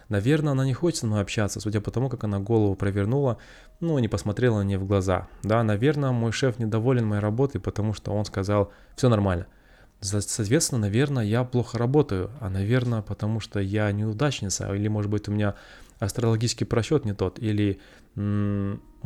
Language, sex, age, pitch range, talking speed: Russian, male, 20-39, 100-120 Hz, 175 wpm